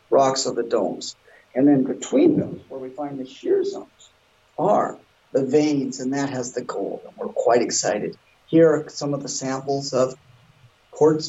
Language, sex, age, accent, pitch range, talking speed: English, male, 50-69, American, 135-160 Hz, 175 wpm